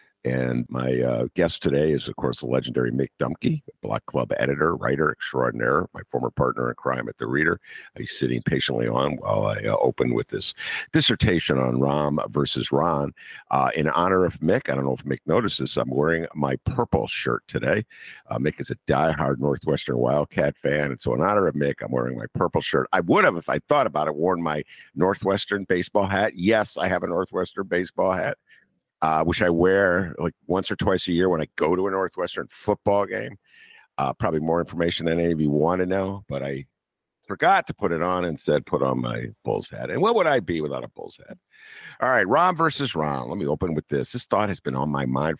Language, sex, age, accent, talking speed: English, male, 50-69, American, 220 wpm